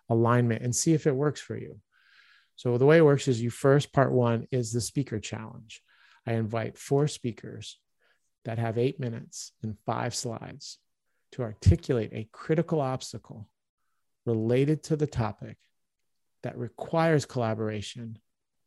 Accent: American